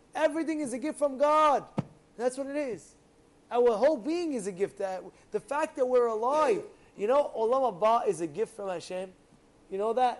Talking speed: 200 wpm